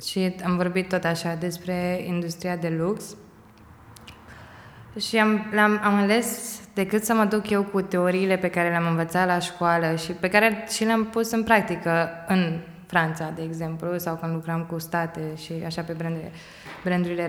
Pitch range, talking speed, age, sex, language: 175-205 Hz, 170 wpm, 20-39, female, Romanian